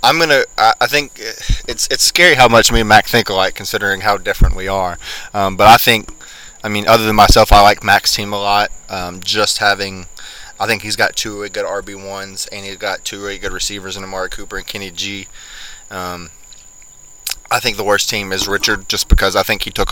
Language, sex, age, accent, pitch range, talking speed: English, male, 20-39, American, 95-105 Hz, 230 wpm